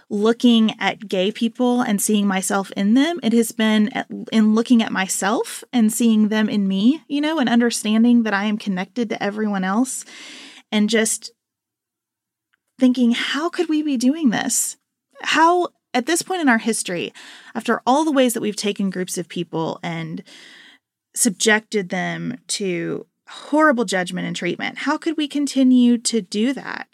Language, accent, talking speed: English, American, 165 wpm